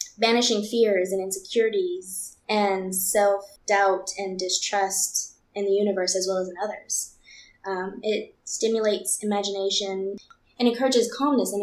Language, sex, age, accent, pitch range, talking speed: English, female, 10-29, American, 190-225 Hz, 125 wpm